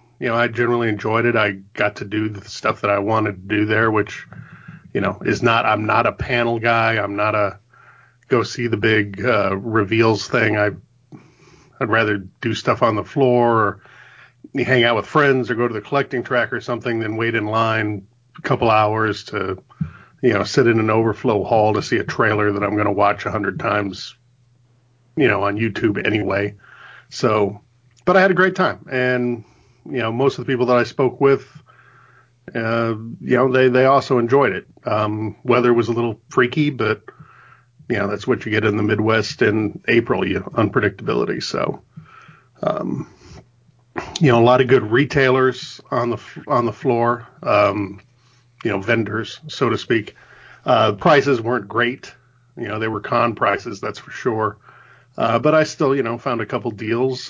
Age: 40-59